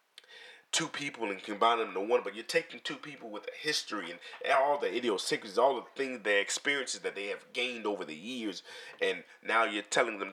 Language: English